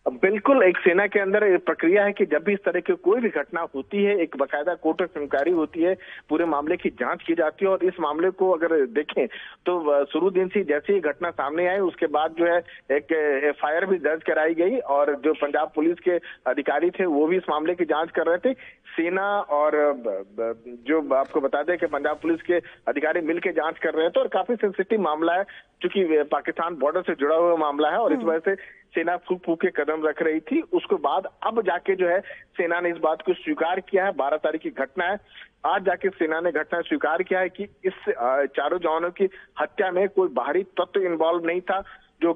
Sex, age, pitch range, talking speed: male, 50-69, 155-190 Hz, 220 wpm